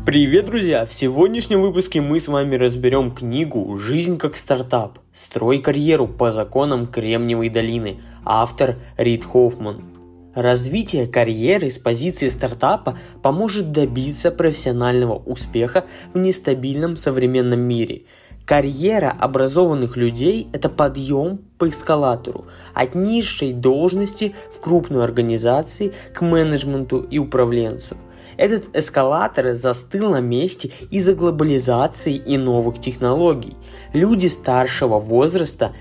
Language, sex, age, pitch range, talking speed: Russian, male, 20-39, 120-165 Hz, 110 wpm